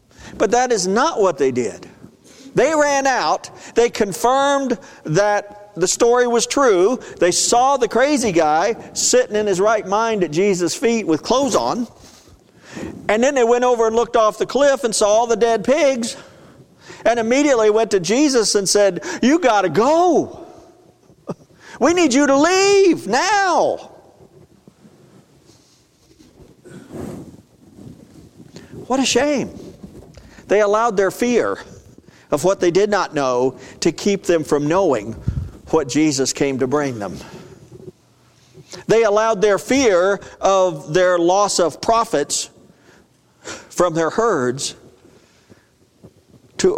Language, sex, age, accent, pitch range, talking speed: English, male, 50-69, American, 175-250 Hz, 130 wpm